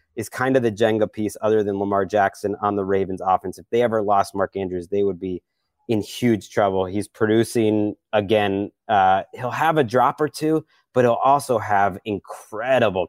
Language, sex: English, male